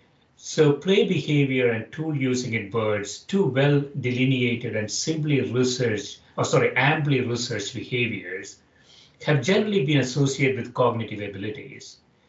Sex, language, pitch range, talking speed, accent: male, English, 115-145 Hz, 125 wpm, Indian